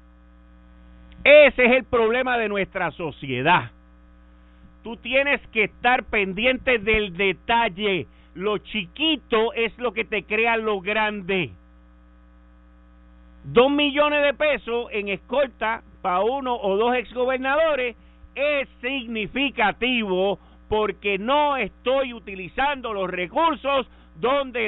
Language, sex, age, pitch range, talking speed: Spanish, male, 50-69, 185-260 Hz, 105 wpm